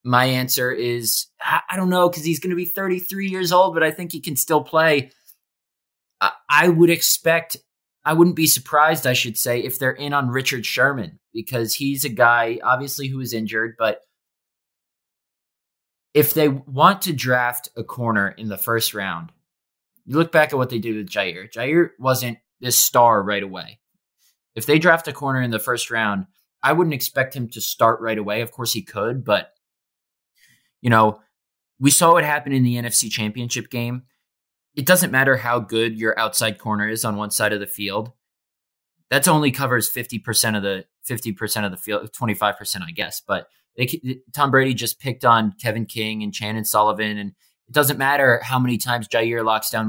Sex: male